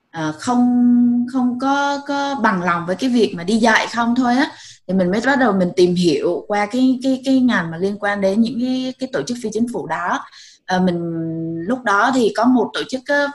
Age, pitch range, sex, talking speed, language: 20-39, 170-235 Hz, female, 235 wpm, Vietnamese